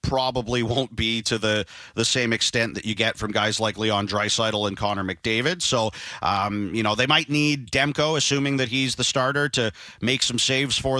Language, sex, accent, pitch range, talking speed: English, male, American, 115-140 Hz, 200 wpm